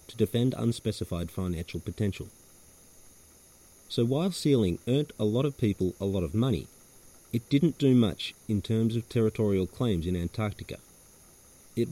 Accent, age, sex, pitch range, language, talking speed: Australian, 40-59, male, 90-115 Hz, English, 145 wpm